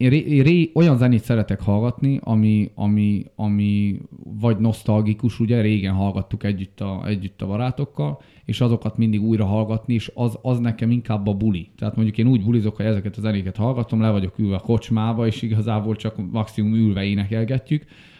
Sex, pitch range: male, 105-125 Hz